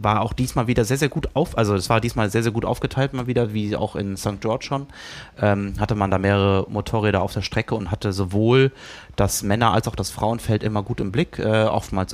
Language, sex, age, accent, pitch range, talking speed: German, male, 30-49, German, 100-115 Hz, 235 wpm